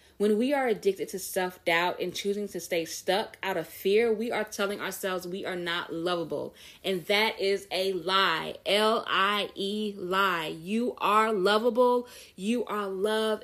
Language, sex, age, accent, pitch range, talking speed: English, female, 20-39, American, 165-205 Hz, 155 wpm